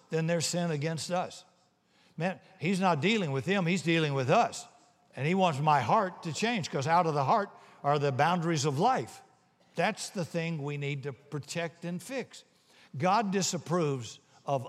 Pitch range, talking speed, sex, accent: 135-170 Hz, 180 wpm, male, American